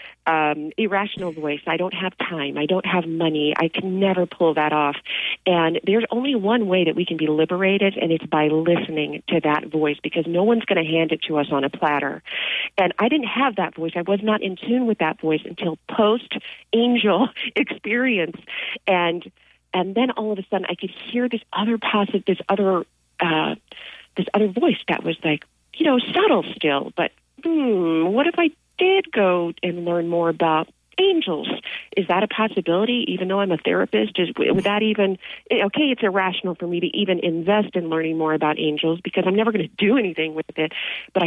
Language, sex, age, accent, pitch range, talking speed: English, female, 40-59, American, 165-215 Hz, 200 wpm